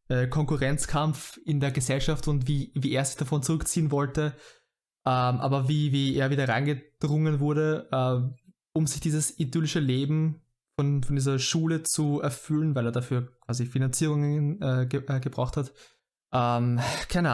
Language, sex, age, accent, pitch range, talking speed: German, male, 20-39, German, 135-160 Hz, 150 wpm